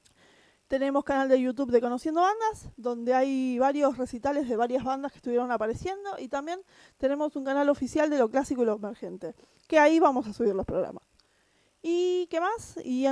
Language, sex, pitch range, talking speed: Spanish, female, 245-310 Hz, 190 wpm